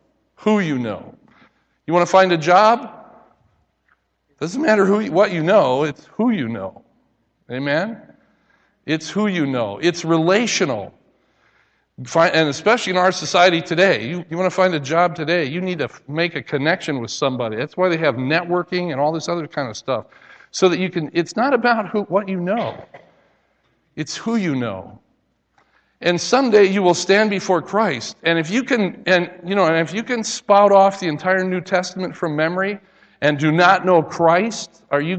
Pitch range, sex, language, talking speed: 145-195 Hz, male, English, 185 wpm